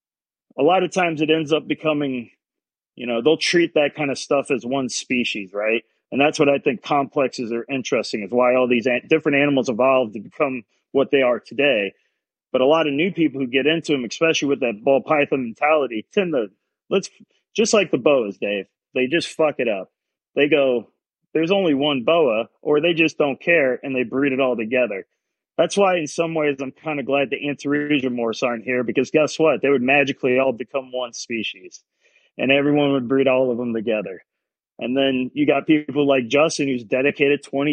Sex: male